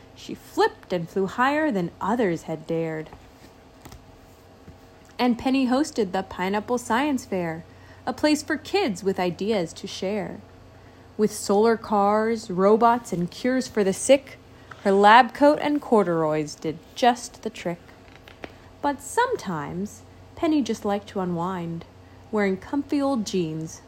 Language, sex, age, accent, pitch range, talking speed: English, female, 30-49, American, 165-240 Hz, 135 wpm